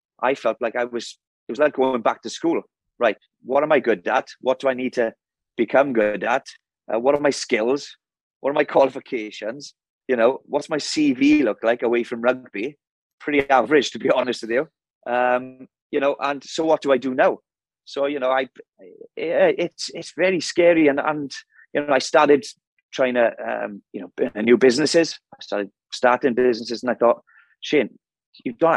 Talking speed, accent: 195 wpm, British